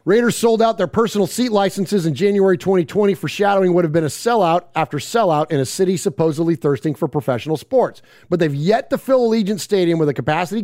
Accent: American